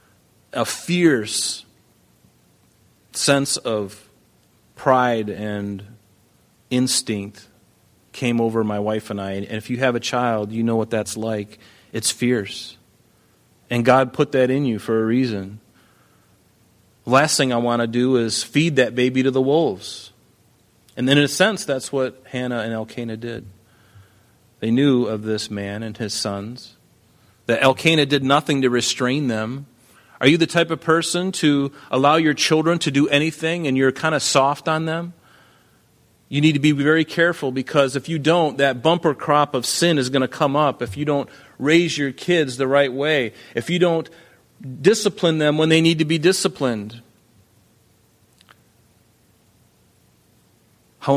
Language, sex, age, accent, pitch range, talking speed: English, male, 30-49, American, 110-145 Hz, 155 wpm